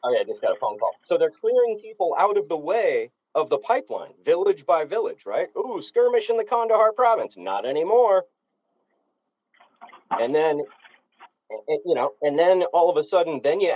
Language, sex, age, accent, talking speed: English, male, 40-59, American, 185 wpm